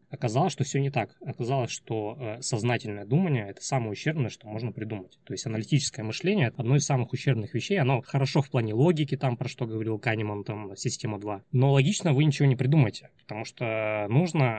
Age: 20-39